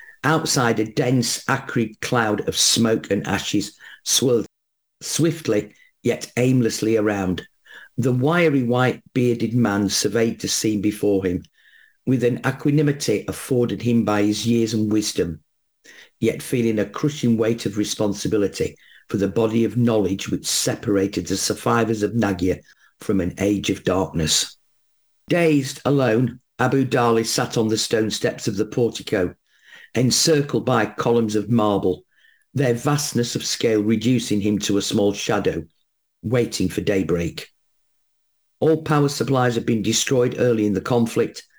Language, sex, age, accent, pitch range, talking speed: English, male, 50-69, British, 105-125 Hz, 140 wpm